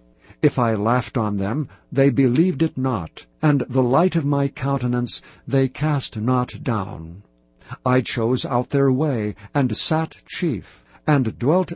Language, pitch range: English, 120-150 Hz